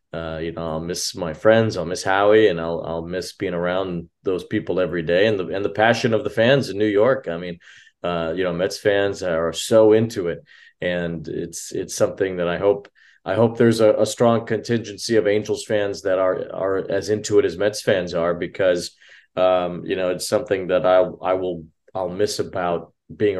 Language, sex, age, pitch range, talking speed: English, male, 40-59, 85-105 Hz, 215 wpm